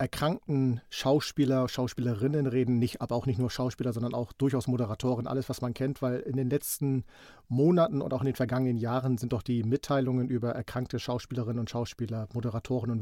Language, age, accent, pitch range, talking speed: German, 40-59, German, 120-135 Hz, 185 wpm